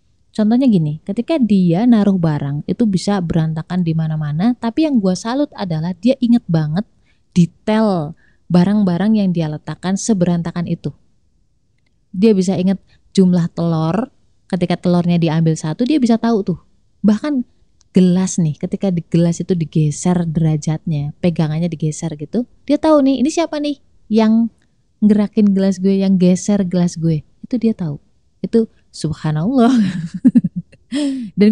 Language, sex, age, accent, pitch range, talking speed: Indonesian, female, 20-39, native, 160-220 Hz, 135 wpm